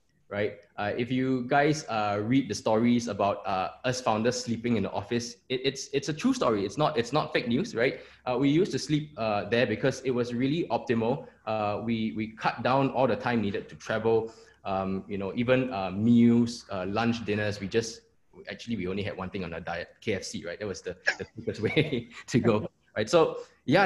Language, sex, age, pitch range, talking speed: English, male, 20-39, 105-130 Hz, 215 wpm